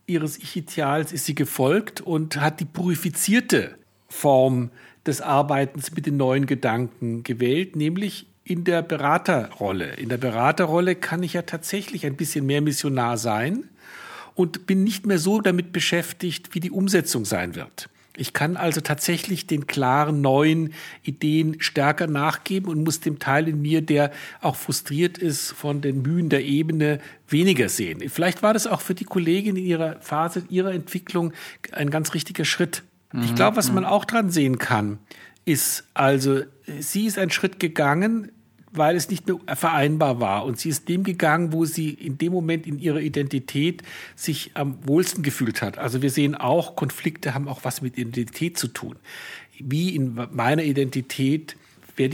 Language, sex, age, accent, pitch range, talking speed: German, male, 60-79, German, 140-175 Hz, 165 wpm